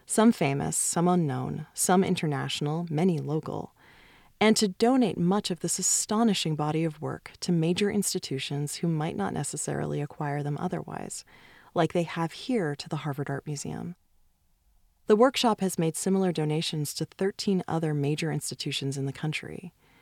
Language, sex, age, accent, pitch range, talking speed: English, female, 30-49, American, 155-200 Hz, 155 wpm